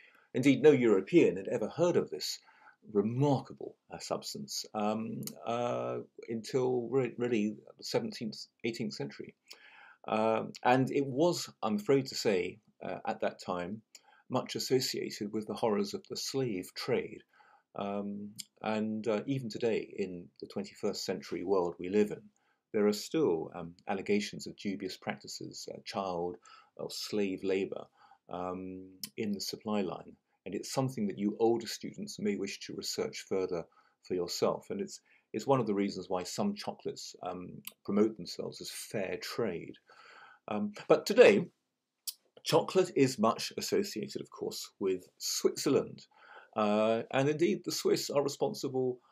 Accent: British